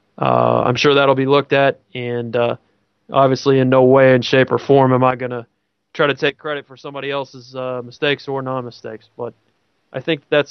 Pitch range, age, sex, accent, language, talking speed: 120-140 Hz, 20-39, male, American, English, 205 wpm